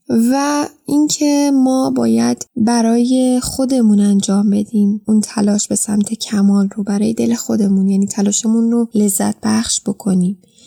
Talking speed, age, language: 130 wpm, 10-29, Persian